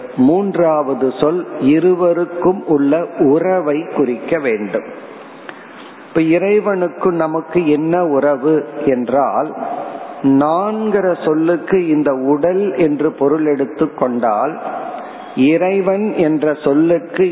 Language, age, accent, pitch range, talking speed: Tamil, 50-69, native, 130-170 Hz, 85 wpm